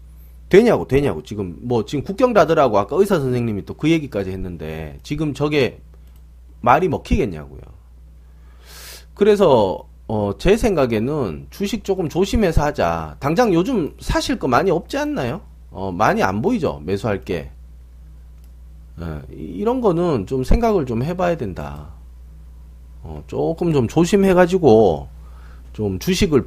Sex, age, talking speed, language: male, 40-59, 115 wpm, English